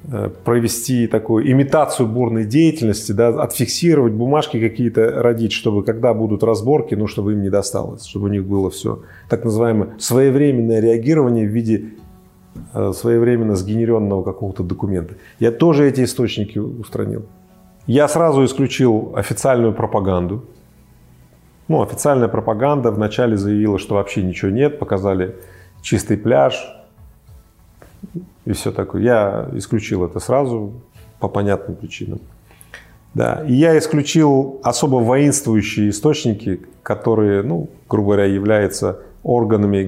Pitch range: 100-125 Hz